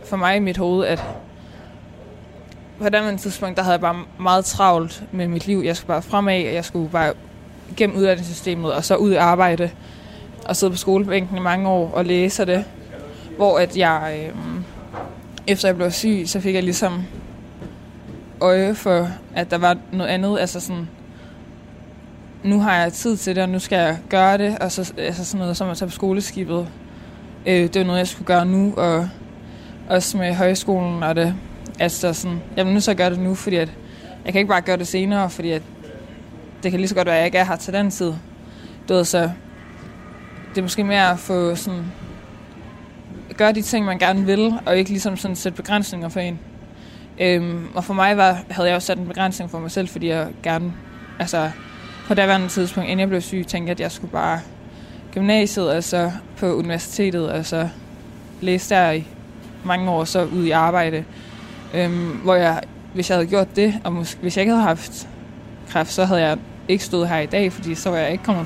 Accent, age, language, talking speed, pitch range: native, 20-39, Danish, 200 wpm, 170-190 Hz